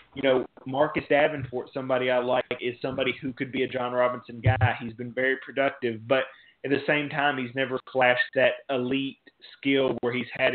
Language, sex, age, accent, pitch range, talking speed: English, male, 20-39, American, 125-140 Hz, 195 wpm